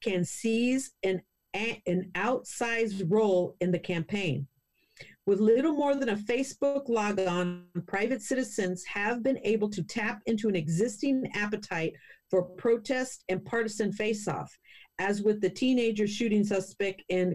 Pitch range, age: 175-225 Hz, 50-69